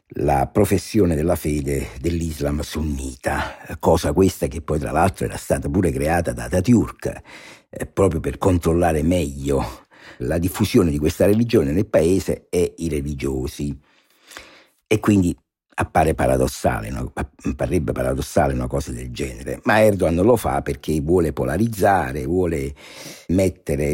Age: 60-79